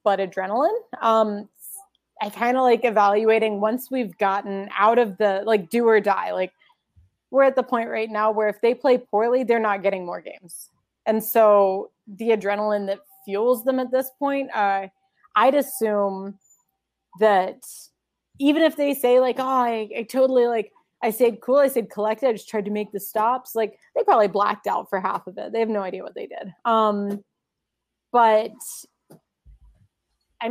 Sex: female